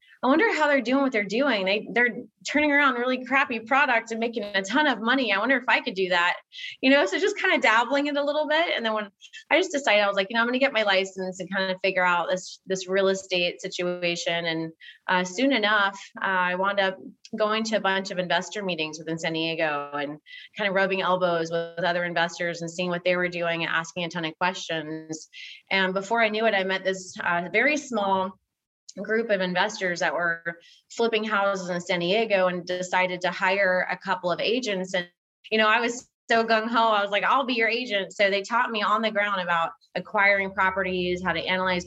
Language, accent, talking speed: English, American, 230 wpm